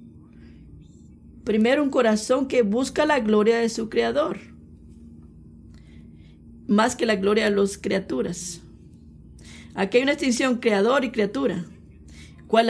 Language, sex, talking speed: Spanish, female, 120 wpm